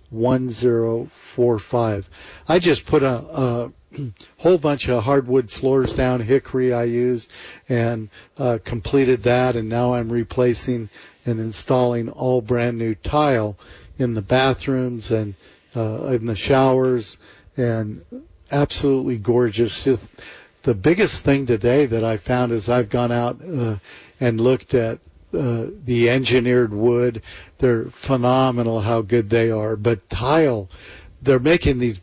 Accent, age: American, 50-69